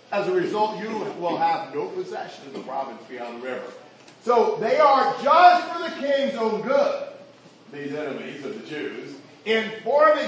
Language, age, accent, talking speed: English, 40-59, American, 170 wpm